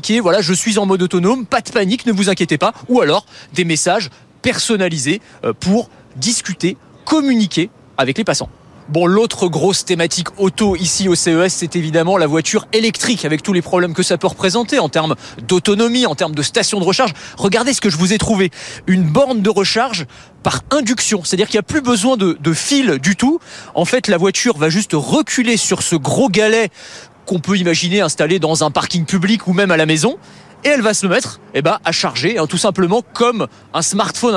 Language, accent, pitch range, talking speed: French, French, 170-225 Hz, 205 wpm